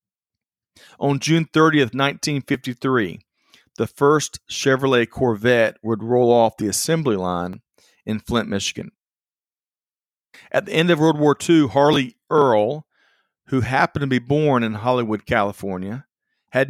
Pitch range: 115-145 Hz